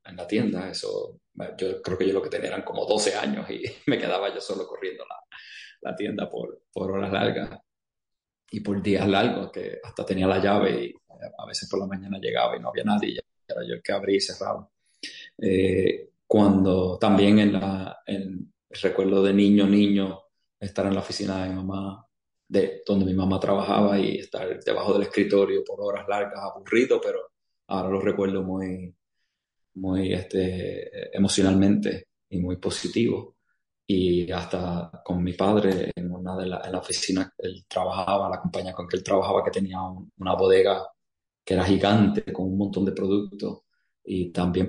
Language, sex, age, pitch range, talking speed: English, male, 30-49, 95-105 Hz, 175 wpm